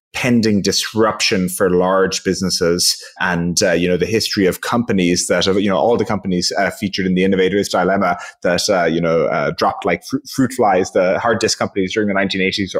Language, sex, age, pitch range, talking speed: English, male, 20-39, 95-120 Hz, 190 wpm